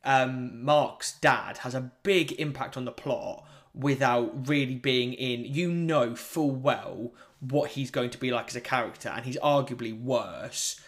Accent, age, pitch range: British, 20-39, 120-145 Hz